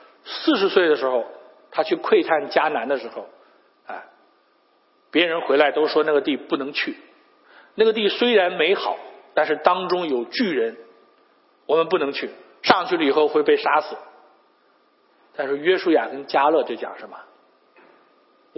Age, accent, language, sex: 50-69, native, Chinese, male